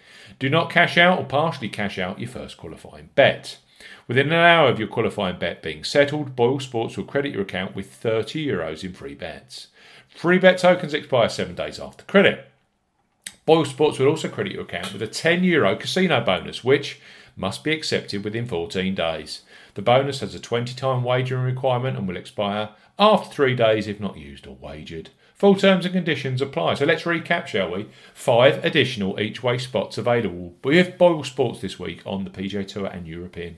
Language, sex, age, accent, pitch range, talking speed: English, male, 40-59, British, 95-160 Hz, 185 wpm